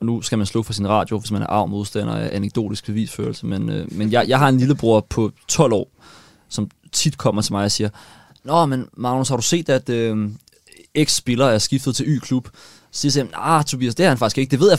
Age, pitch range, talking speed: 20-39, 110-140 Hz, 245 wpm